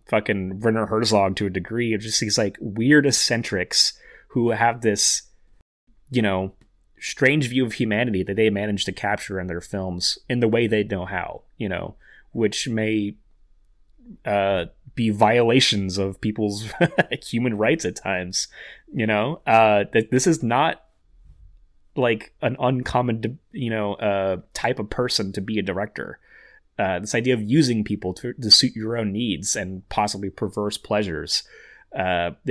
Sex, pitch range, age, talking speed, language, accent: male, 100-120 Hz, 30-49, 155 wpm, English, American